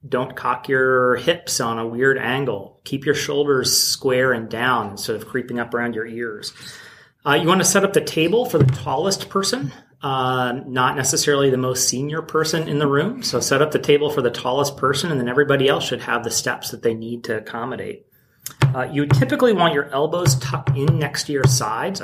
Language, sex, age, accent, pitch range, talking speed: English, male, 30-49, American, 125-150 Hz, 210 wpm